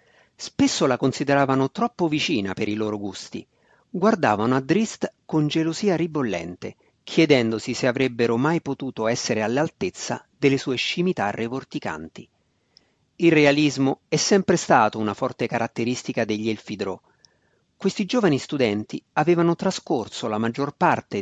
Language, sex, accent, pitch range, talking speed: Italian, male, native, 115-170 Hz, 125 wpm